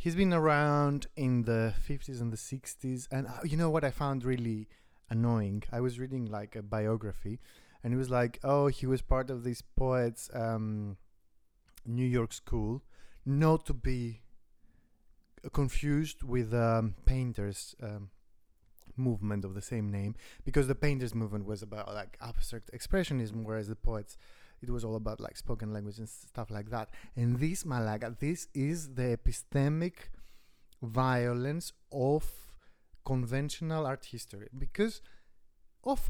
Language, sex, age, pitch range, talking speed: English, male, 30-49, 115-145 Hz, 150 wpm